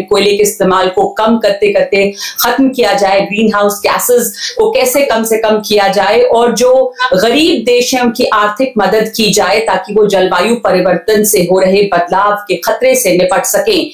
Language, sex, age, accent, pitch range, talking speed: English, female, 50-69, Indian, 205-255 Hz, 175 wpm